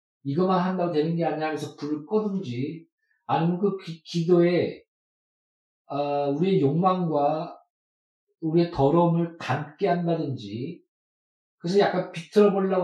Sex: male